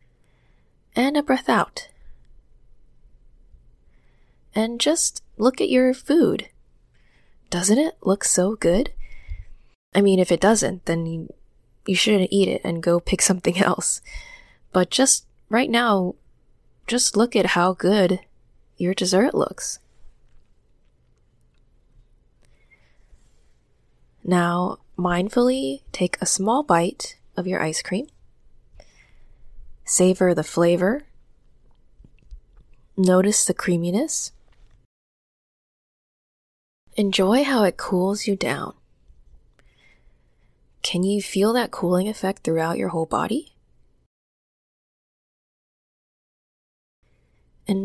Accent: American